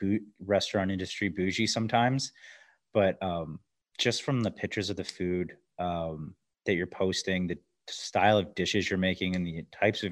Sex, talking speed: male, 165 wpm